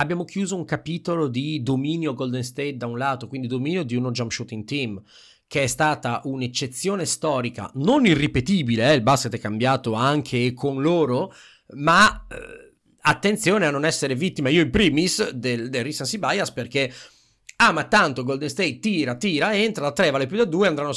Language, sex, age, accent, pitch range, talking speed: Italian, male, 40-59, native, 125-170 Hz, 180 wpm